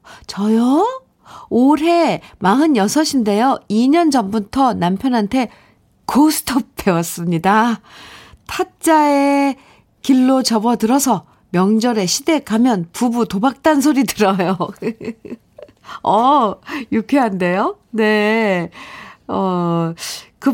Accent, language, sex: native, Korean, female